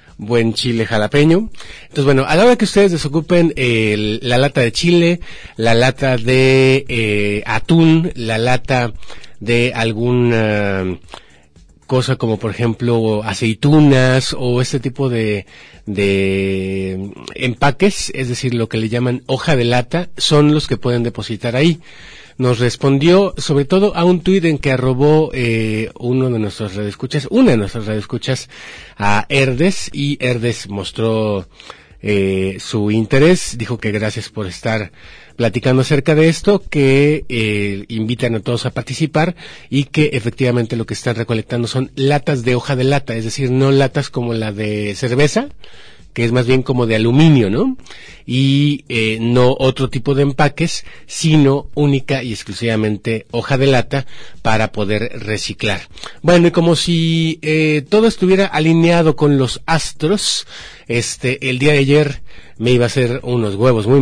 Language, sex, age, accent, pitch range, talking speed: Spanish, male, 40-59, Mexican, 110-145 Hz, 150 wpm